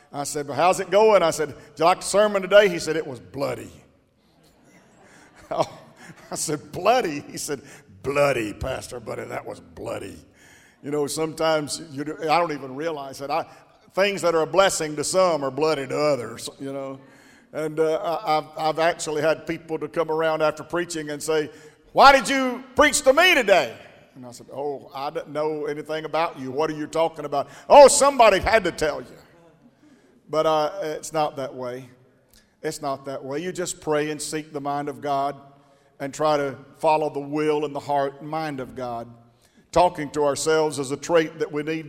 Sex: male